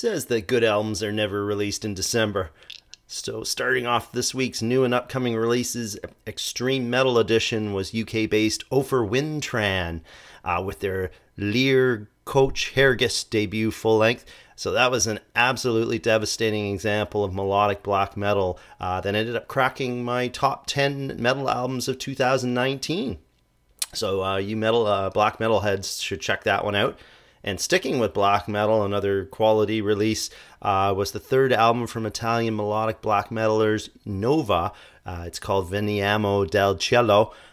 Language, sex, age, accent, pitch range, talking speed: English, male, 30-49, American, 100-120 Hz, 155 wpm